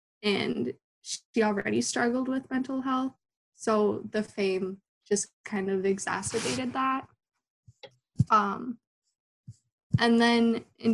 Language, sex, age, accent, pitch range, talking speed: English, female, 20-39, American, 200-230 Hz, 105 wpm